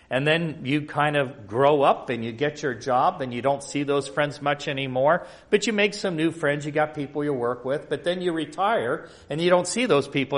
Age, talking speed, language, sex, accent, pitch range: 40-59, 245 wpm, English, male, American, 120-155 Hz